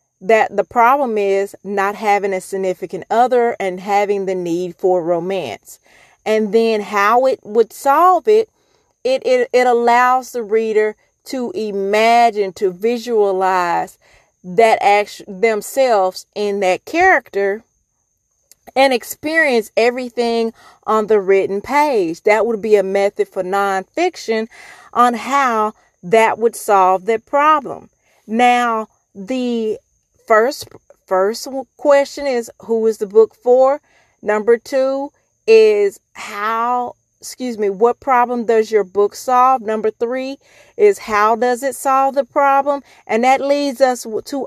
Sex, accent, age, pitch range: female, American, 40-59, 205-270 Hz